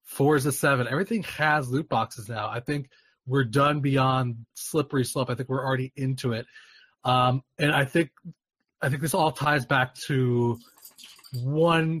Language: English